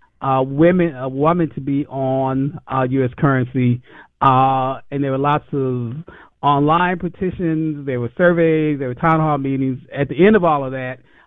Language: English